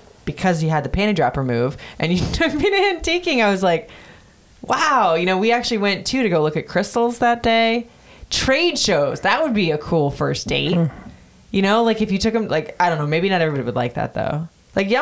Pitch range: 155-220 Hz